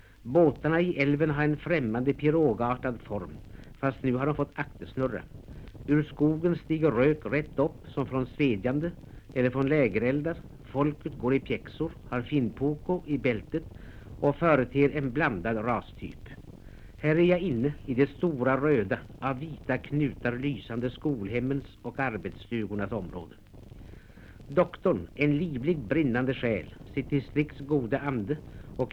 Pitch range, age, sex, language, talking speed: 115-150 Hz, 60-79, male, Swedish, 135 wpm